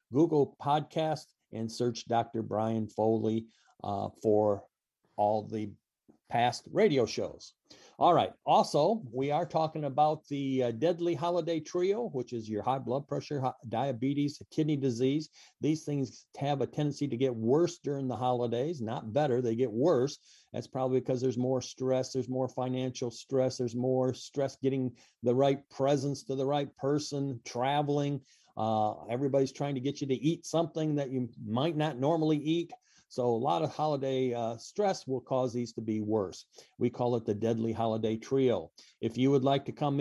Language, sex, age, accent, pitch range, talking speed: English, male, 50-69, American, 115-145 Hz, 170 wpm